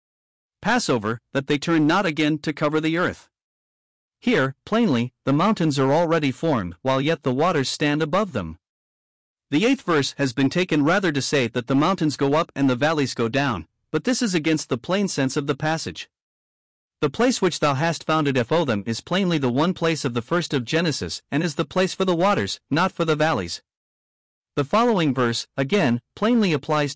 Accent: American